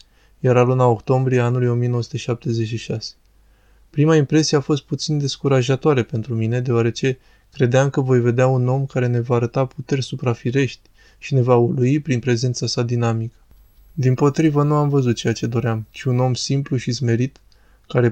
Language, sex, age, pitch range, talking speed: Romanian, male, 20-39, 115-135 Hz, 160 wpm